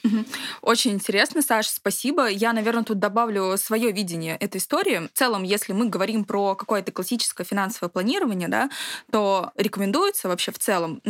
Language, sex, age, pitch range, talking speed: Russian, female, 20-39, 185-230 Hz, 150 wpm